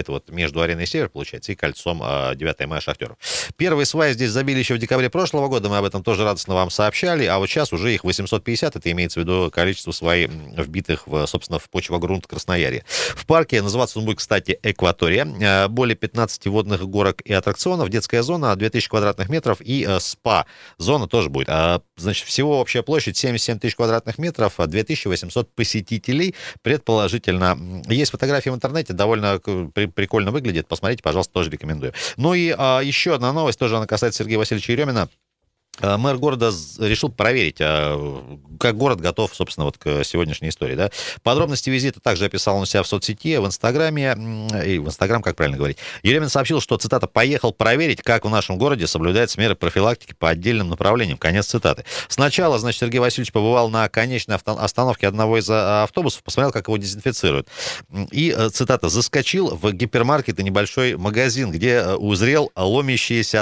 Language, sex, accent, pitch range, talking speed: Russian, male, native, 95-125 Hz, 170 wpm